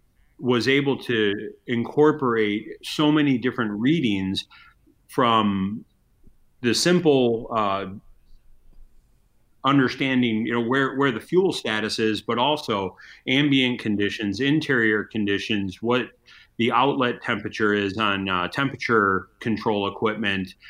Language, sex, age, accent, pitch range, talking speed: English, male, 40-59, American, 105-125 Hz, 105 wpm